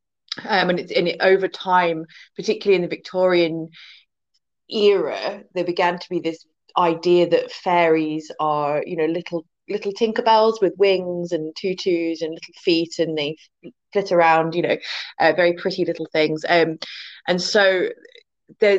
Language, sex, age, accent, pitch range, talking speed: English, female, 20-39, British, 160-205 Hz, 155 wpm